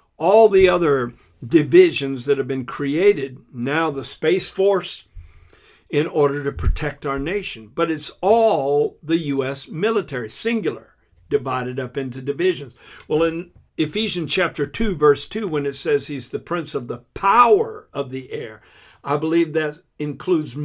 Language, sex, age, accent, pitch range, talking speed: English, male, 60-79, American, 135-190 Hz, 150 wpm